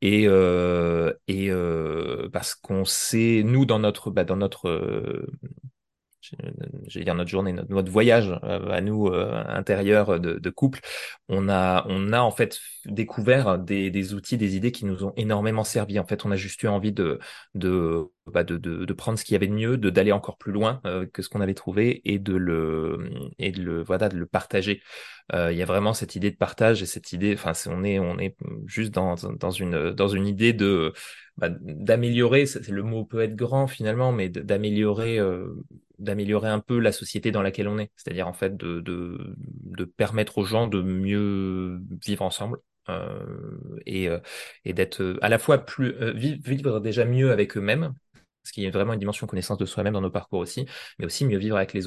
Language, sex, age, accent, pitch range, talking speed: French, male, 20-39, French, 95-110 Hz, 205 wpm